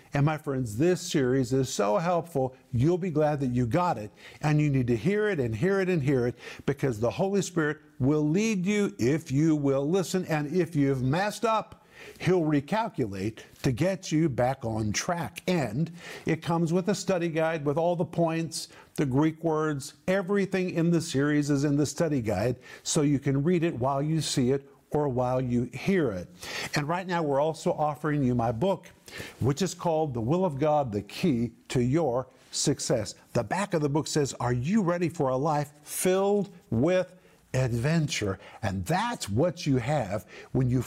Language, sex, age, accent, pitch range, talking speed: English, male, 50-69, American, 135-175 Hz, 190 wpm